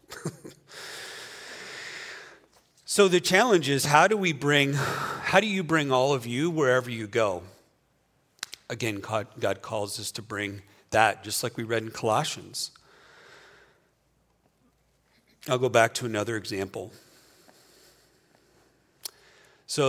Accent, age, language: American, 40-59, English